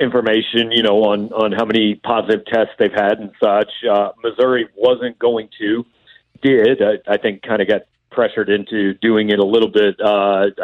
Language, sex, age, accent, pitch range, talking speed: English, male, 50-69, American, 110-140 Hz, 185 wpm